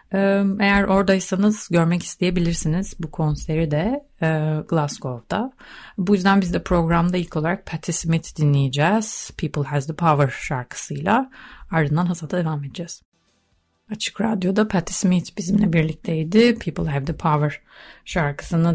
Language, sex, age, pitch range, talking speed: Turkish, female, 30-49, 150-190 Hz, 130 wpm